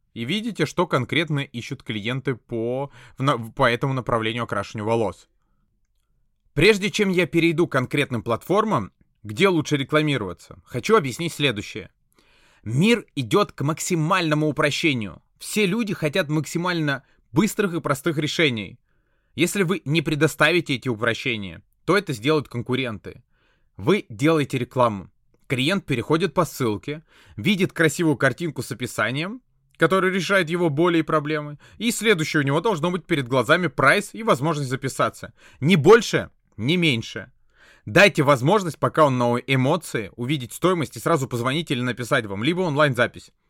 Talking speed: 135 wpm